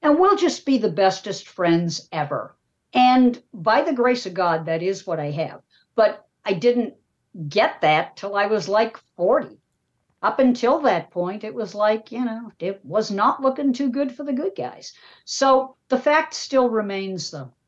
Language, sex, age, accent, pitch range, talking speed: English, female, 50-69, American, 165-265 Hz, 185 wpm